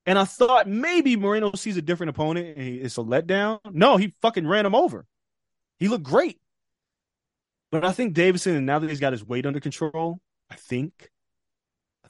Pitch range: 140-185 Hz